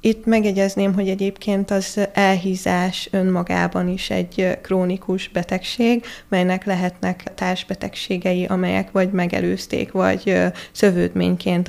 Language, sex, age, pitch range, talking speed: Hungarian, female, 20-39, 180-200 Hz, 100 wpm